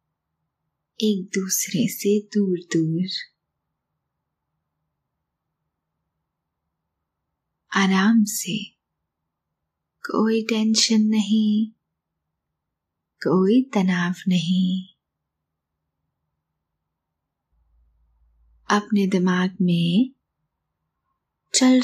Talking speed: 45 wpm